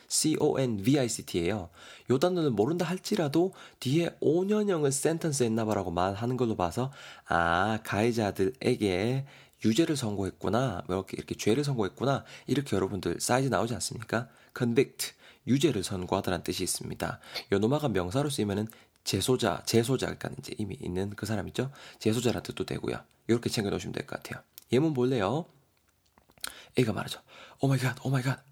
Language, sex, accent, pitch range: Korean, male, native, 100-140 Hz